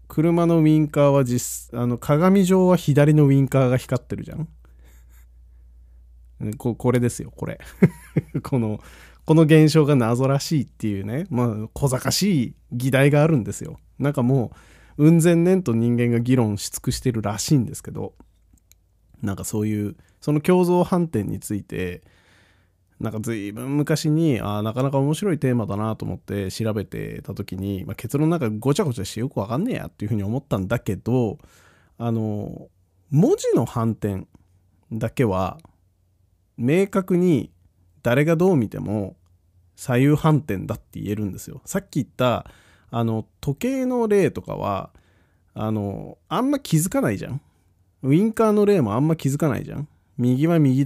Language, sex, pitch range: Japanese, male, 100-150 Hz